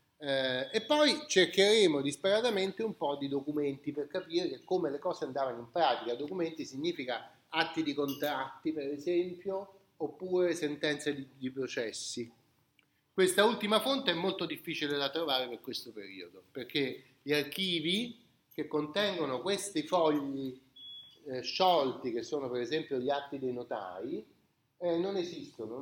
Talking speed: 130 wpm